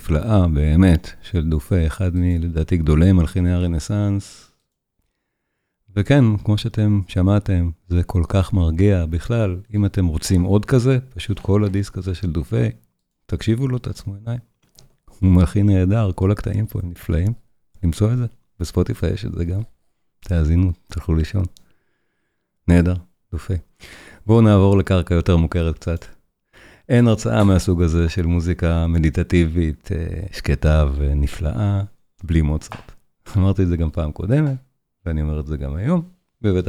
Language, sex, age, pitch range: Hebrew, male, 40-59, 85-105 Hz